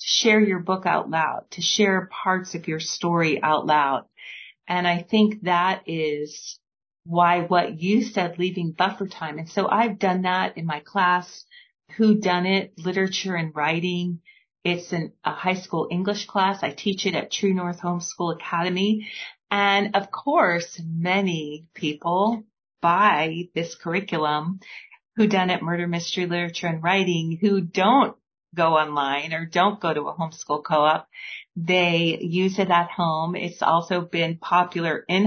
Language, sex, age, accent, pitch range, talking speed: English, female, 40-59, American, 165-195 Hz, 155 wpm